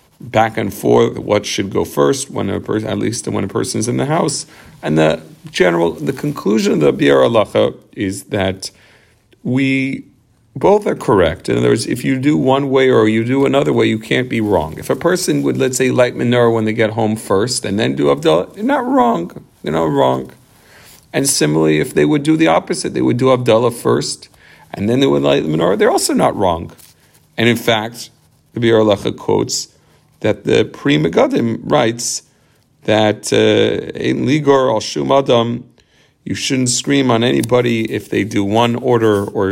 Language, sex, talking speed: English, male, 185 wpm